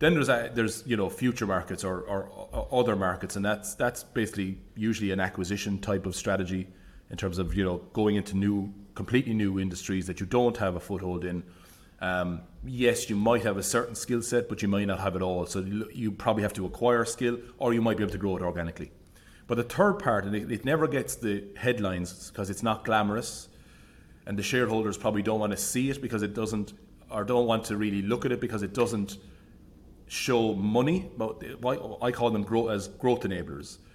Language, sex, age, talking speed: English, male, 30-49, 205 wpm